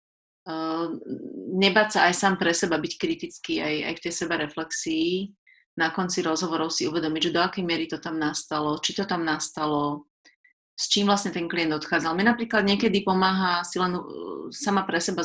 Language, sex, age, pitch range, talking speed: Slovak, female, 30-49, 165-200 Hz, 175 wpm